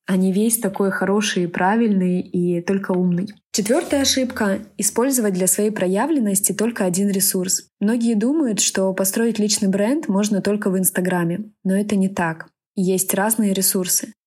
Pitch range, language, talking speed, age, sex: 185-220 Hz, Russian, 150 wpm, 20-39, female